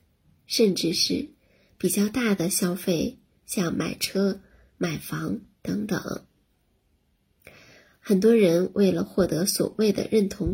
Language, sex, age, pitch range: Chinese, female, 20-39, 180-220 Hz